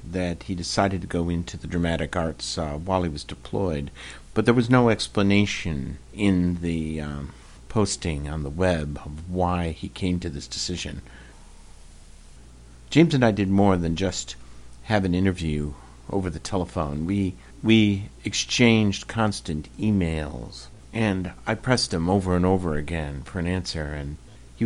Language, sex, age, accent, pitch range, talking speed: English, male, 50-69, American, 70-95 Hz, 155 wpm